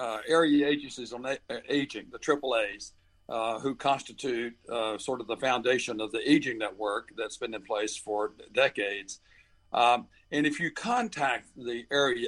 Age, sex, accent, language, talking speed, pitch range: 60-79, male, American, English, 170 wpm, 120-155 Hz